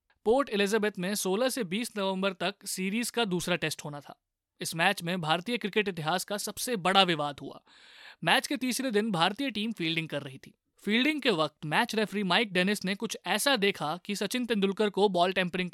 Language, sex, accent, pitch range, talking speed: Hindi, male, native, 170-230 Hz, 90 wpm